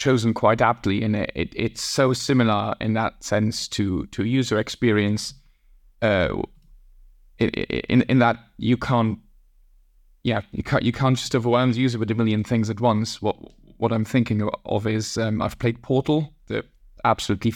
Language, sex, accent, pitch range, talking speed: English, male, British, 110-120 Hz, 165 wpm